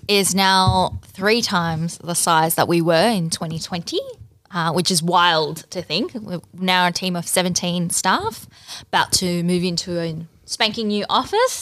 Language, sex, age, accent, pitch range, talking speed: English, female, 10-29, Australian, 170-210 Hz, 165 wpm